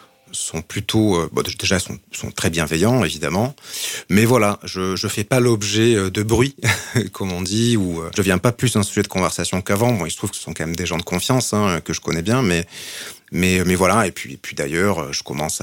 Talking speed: 240 wpm